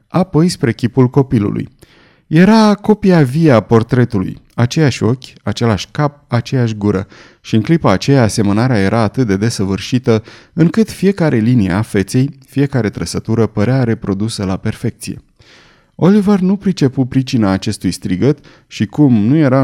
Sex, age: male, 30-49